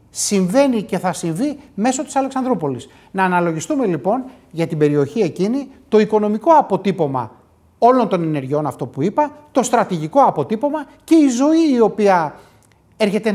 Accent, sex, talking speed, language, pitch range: native, male, 145 wpm, Greek, 170-245 Hz